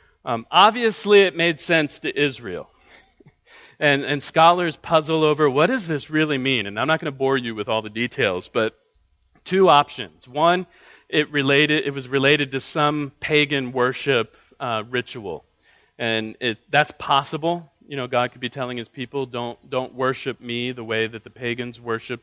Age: 40-59